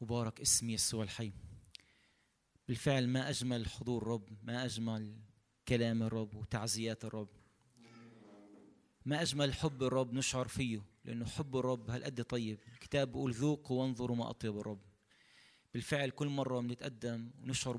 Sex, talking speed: male, 130 wpm